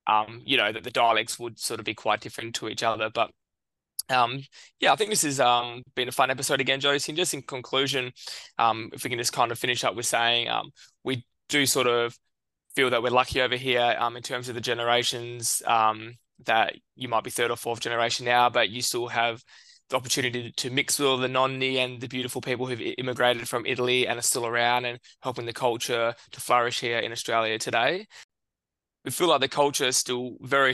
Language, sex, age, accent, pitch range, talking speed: English, male, 20-39, Australian, 120-130 Hz, 215 wpm